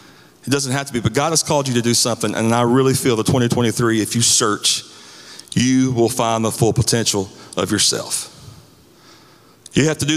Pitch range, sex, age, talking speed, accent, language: 120-160 Hz, male, 40-59, 200 wpm, American, English